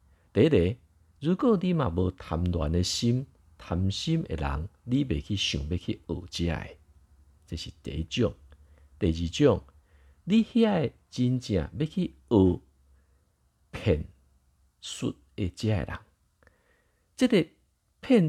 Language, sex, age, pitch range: Chinese, male, 50-69, 80-120 Hz